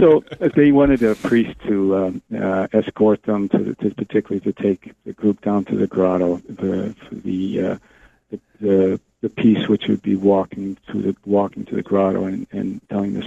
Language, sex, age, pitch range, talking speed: English, male, 50-69, 100-110 Hz, 200 wpm